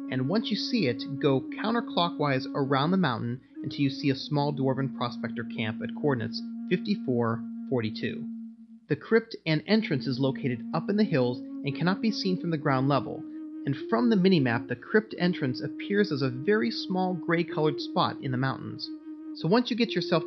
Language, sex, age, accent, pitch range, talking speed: English, male, 30-49, American, 130-205 Hz, 185 wpm